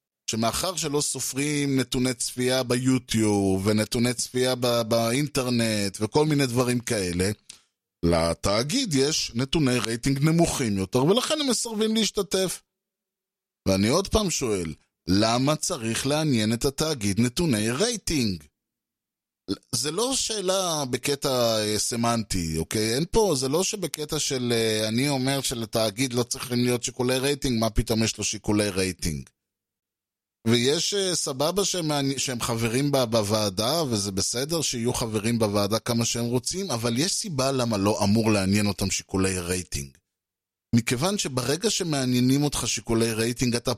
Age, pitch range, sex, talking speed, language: 20-39, 110-145 Hz, male, 125 wpm, Hebrew